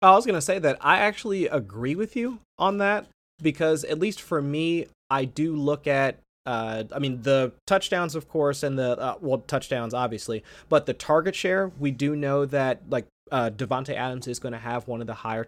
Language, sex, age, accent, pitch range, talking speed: English, male, 30-49, American, 120-150 Hz, 215 wpm